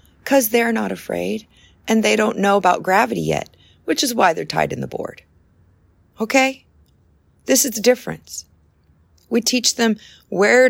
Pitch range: 150-230 Hz